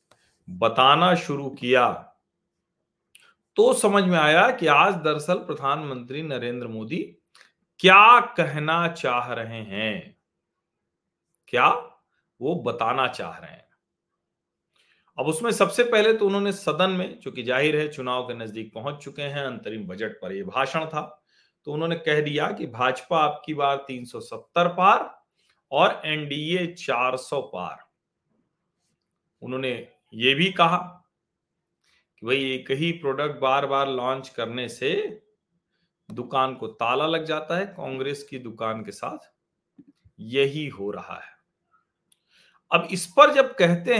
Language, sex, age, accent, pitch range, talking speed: Hindi, male, 40-59, native, 130-175 Hz, 130 wpm